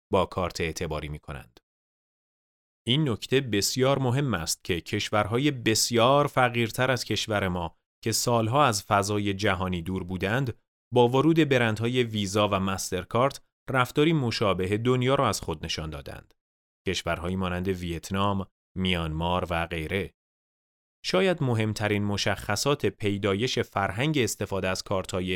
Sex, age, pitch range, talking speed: male, 30-49, 95-125 Hz, 125 wpm